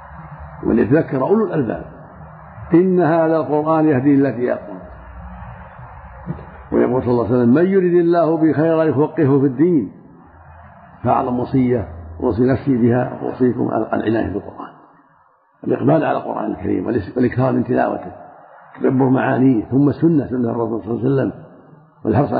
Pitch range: 115-145 Hz